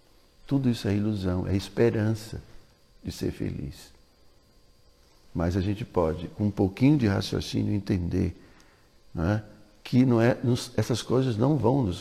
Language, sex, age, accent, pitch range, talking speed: Portuguese, male, 60-79, Brazilian, 95-115 Hz, 130 wpm